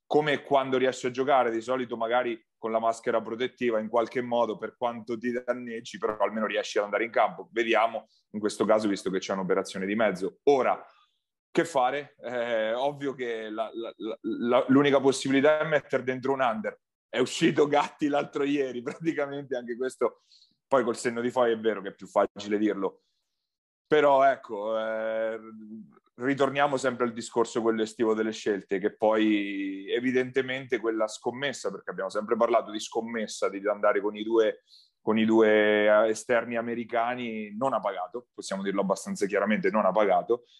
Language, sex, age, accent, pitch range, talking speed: Italian, male, 30-49, native, 110-135 Hz, 160 wpm